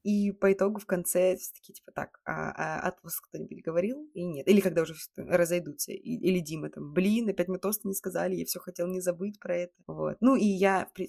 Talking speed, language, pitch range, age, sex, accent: 225 wpm, Russian, 165-195 Hz, 20-39, female, native